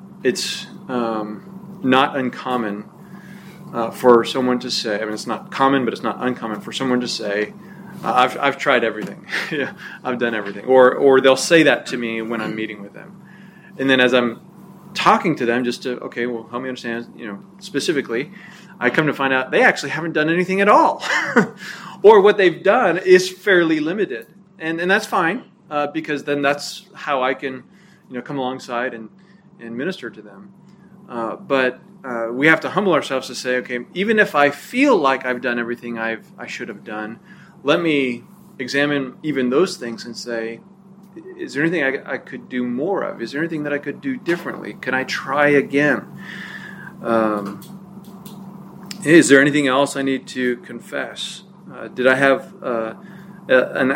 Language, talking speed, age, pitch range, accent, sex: English, 185 wpm, 30-49, 125-190 Hz, American, male